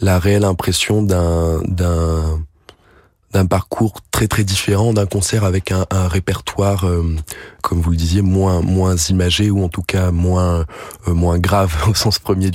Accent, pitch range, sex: French, 85-100 Hz, male